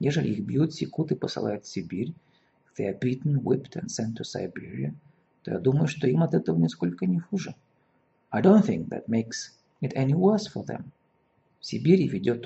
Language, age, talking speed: Russian, 40-59, 150 wpm